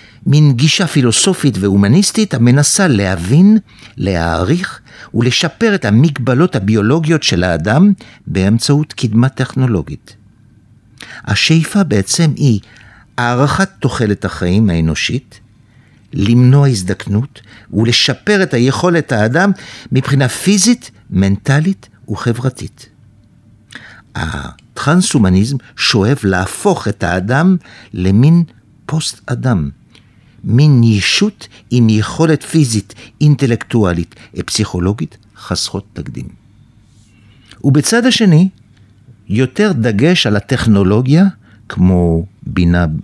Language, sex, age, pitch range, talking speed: Hebrew, male, 60-79, 105-150 Hz, 80 wpm